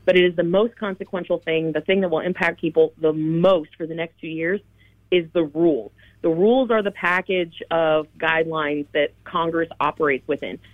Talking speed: 190 wpm